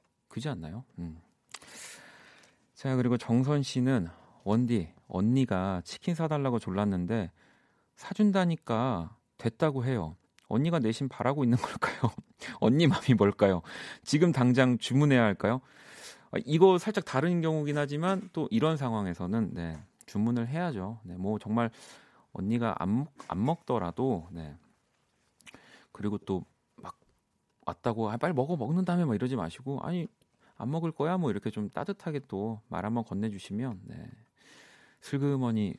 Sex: male